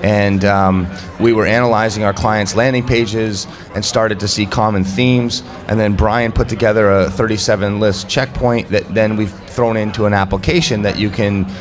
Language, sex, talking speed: English, male, 175 wpm